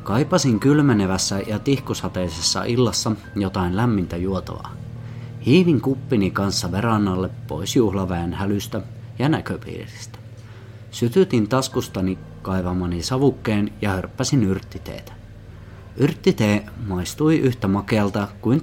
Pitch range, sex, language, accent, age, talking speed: 95-125 Hz, male, Finnish, native, 30-49, 95 wpm